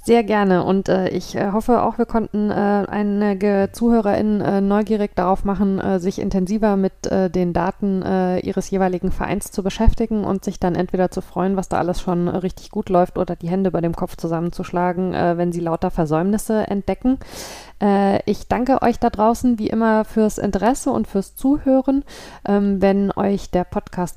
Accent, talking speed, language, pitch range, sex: German, 180 wpm, German, 185-210 Hz, female